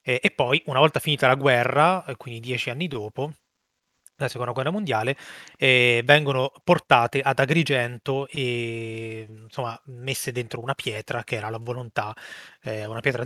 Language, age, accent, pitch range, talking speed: Italian, 20-39, native, 120-135 Hz, 150 wpm